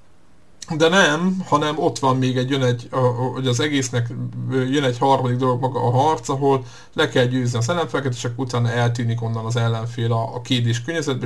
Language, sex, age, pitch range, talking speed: Hungarian, male, 50-69, 120-135 Hz, 175 wpm